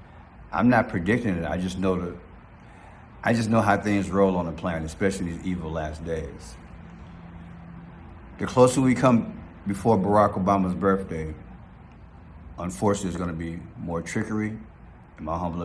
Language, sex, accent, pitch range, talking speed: English, male, American, 85-100 Hz, 155 wpm